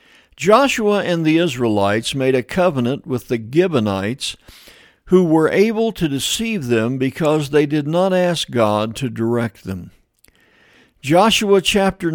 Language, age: English, 60-79